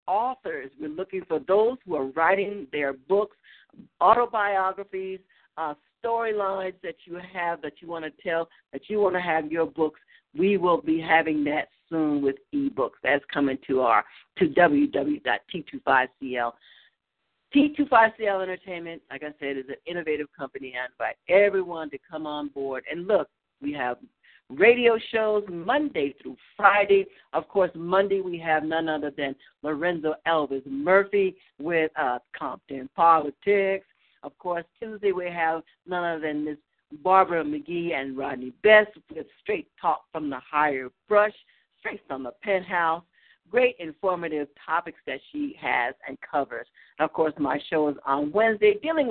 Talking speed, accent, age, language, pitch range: 150 wpm, American, 50-69, English, 155-205 Hz